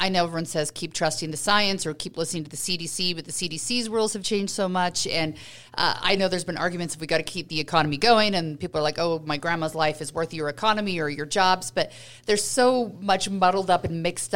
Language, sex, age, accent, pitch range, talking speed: English, female, 40-59, American, 160-200 Hz, 250 wpm